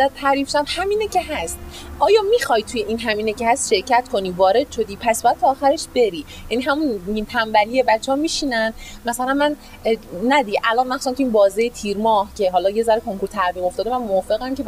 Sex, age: female, 30-49